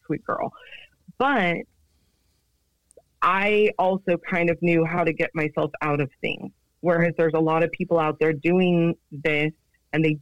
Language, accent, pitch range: English, American, 150-175 Hz